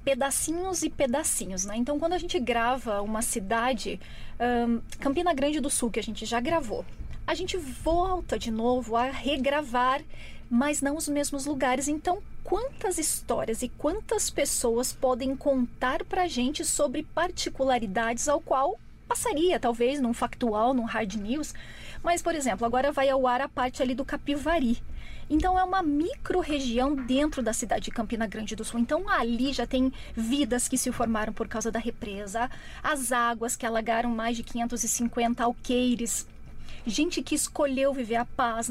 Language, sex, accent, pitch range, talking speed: English, female, Brazilian, 240-305 Hz, 160 wpm